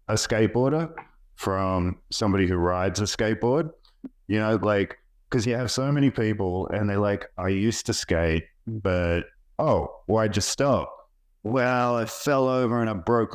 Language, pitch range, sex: English, 95-115 Hz, male